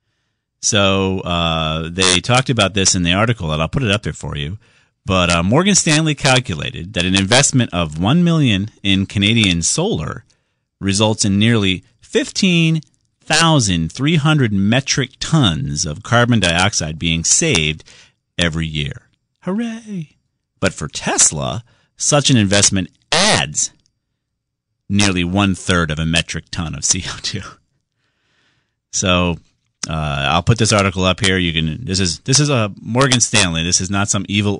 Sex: male